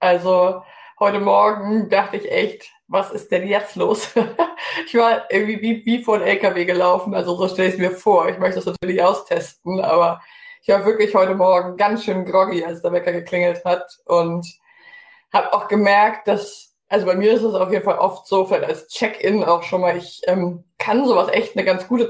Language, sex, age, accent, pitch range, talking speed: German, female, 20-39, German, 180-220 Hz, 205 wpm